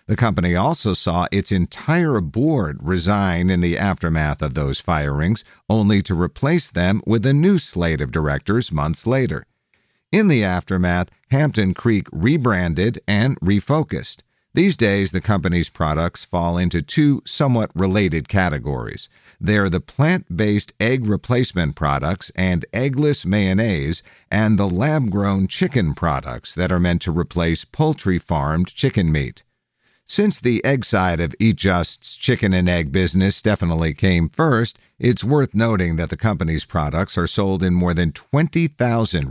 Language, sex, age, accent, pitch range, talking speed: English, male, 50-69, American, 85-115 Hz, 145 wpm